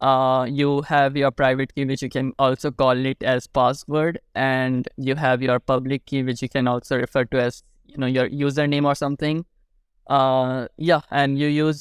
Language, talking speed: English, 195 wpm